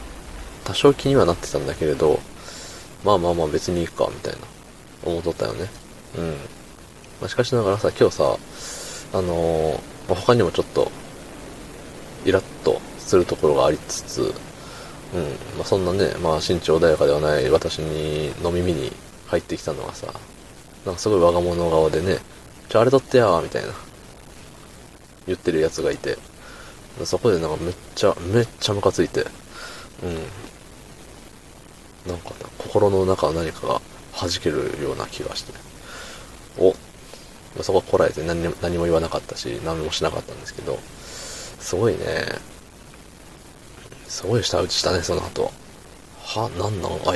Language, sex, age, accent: Japanese, male, 20-39, native